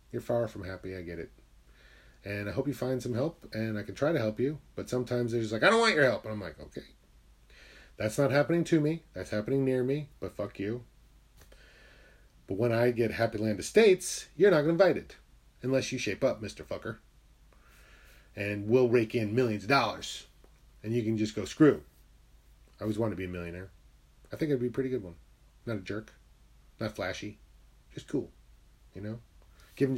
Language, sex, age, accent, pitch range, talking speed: English, male, 30-49, American, 90-130 Hz, 210 wpm